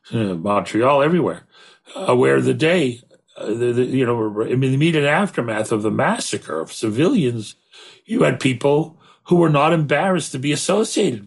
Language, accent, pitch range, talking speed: English, American, 130-175 Hz, 165 wpm